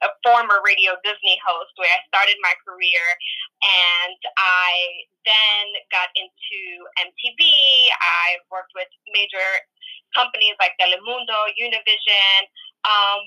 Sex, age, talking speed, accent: female, 20-39, 115 wpm, American